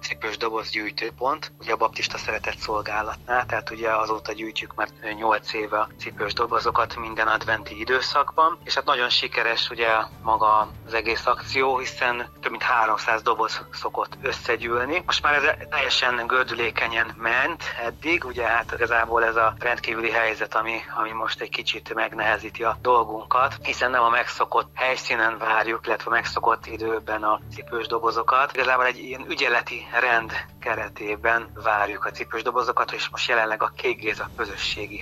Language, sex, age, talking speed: Hungarian, male, 30-49, 150 wpm